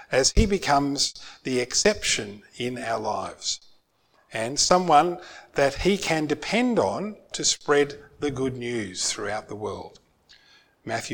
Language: English